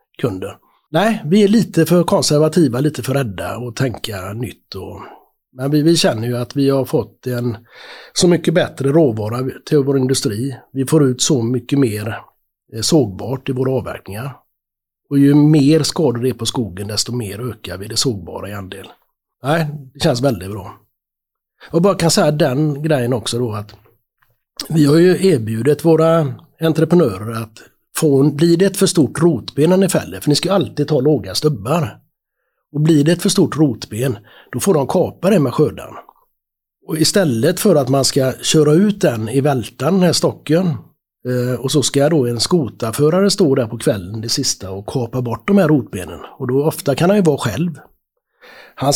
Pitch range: 120-160 Hz